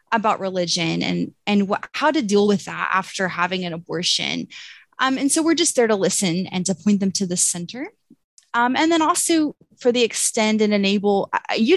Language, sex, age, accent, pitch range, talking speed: English, female, 20-39, American, 190-255 Hz, 200 wpm